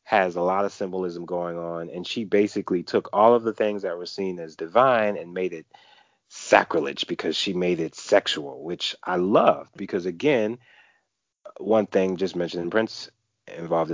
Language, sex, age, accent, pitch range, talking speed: English, male, 30-49, American, 80-95 Hz, 170 wpm